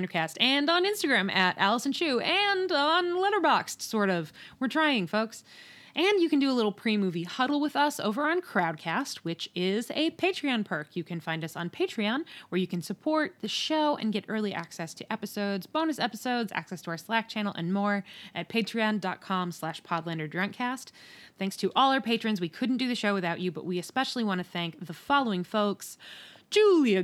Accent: American